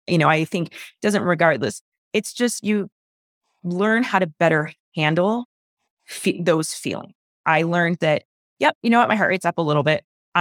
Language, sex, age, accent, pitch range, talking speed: English, female, 20-39, American, 155-205 Hz, 185 wpm